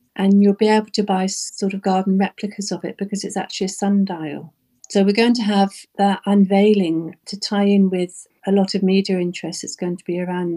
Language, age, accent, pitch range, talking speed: English, 50-69, British, 175-200 Hz, 215 wpm